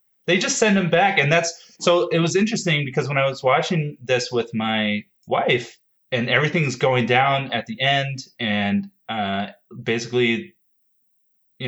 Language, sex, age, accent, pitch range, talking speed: English, male, 30-49, American, 110-165 Hz, 160 wpm